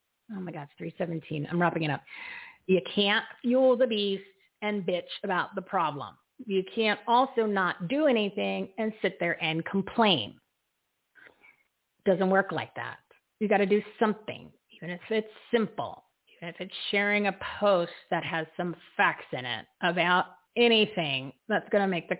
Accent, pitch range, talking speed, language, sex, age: American, 185-230 Hz, 170 wpm, English, female, 40-59